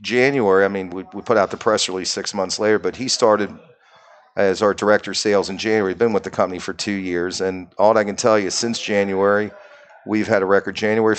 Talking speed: 240 wpm